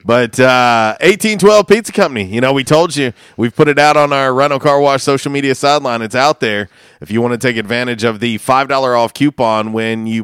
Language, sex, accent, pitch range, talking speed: English, male, American, 110-135 Hz, 225 wpm